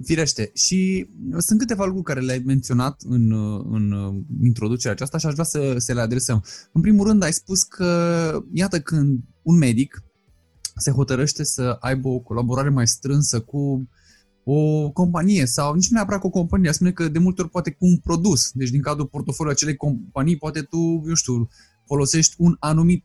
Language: Romanian